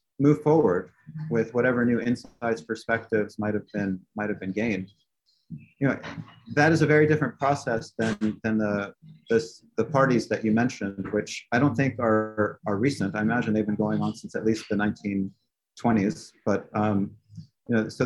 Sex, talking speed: male, 180 wpm